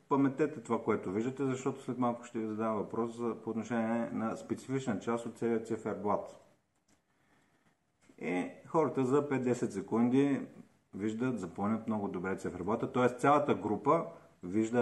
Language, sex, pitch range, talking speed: Bulgarian, male, 95-120 Hz, 135 wpm